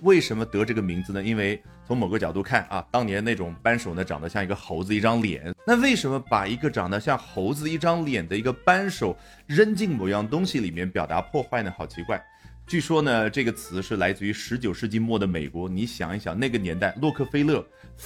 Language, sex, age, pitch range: Chinese, male, 30-49, 95-130 Hz